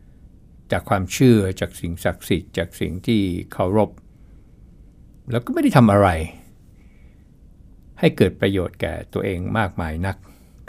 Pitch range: 90-110 Hz